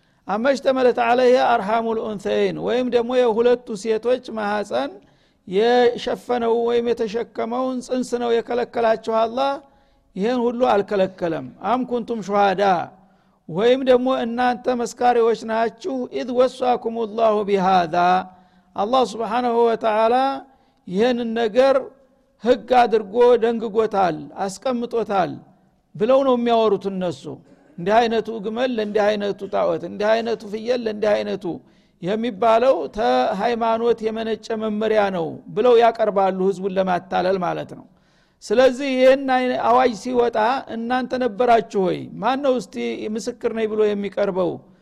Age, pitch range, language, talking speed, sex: 60-79, 205-245 Hz, Amharic, 95 wpm, male